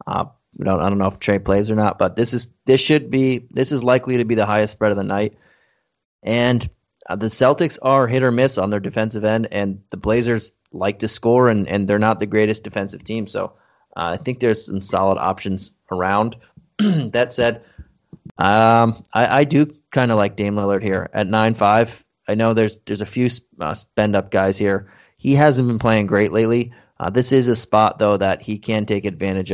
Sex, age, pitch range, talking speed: male, 30-49, 100-115 Hz, 215 wpm